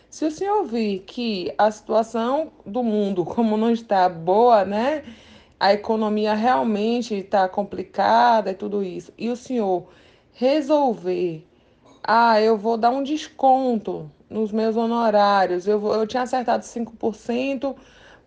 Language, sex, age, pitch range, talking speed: Portuguese, female, 20-39, 210-275 Hz, 130 wpm